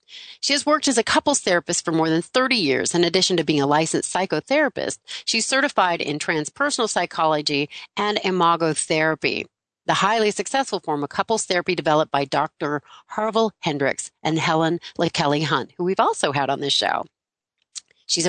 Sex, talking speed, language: female, 165 wpm, English